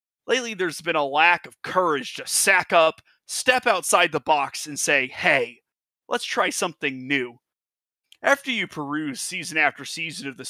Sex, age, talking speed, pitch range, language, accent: male, 30-49, 165 wpm, 145-205 Hz, English, American